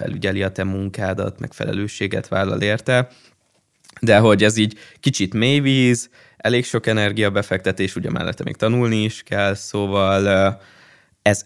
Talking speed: 130 wpm